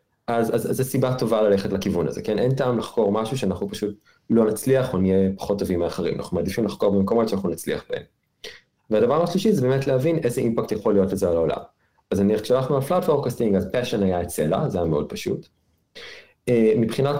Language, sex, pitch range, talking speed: Hebrew, male, 95-120 Hz, 200 wpm